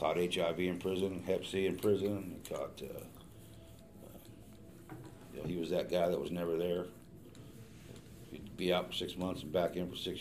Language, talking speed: English, 190 wpm